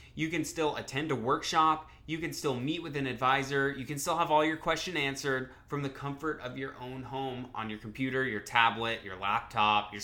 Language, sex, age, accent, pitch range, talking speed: English, male, 20-39, American, 120-150 Hz, 215 wpm